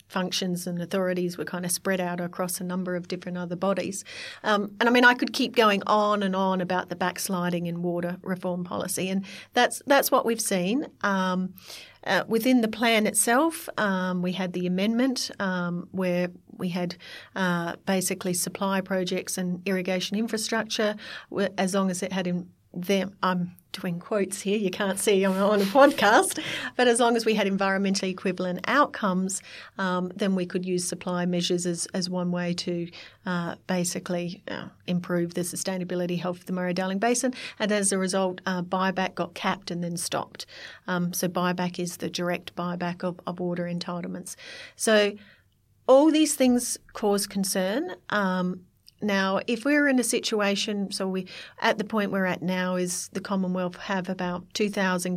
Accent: Australian